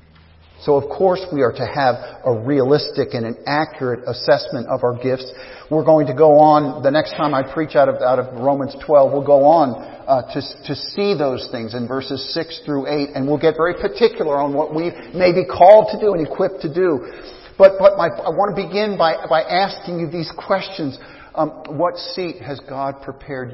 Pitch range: 135-190 Hz